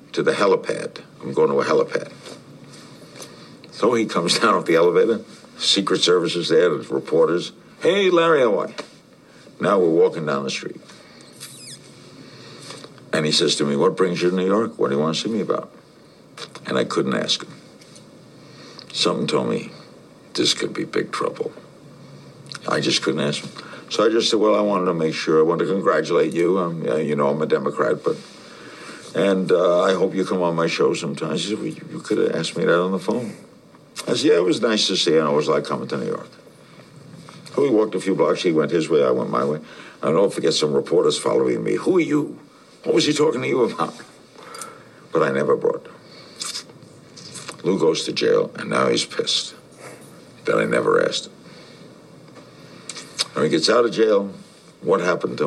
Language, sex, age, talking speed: English, male, 60-79, 200 wpm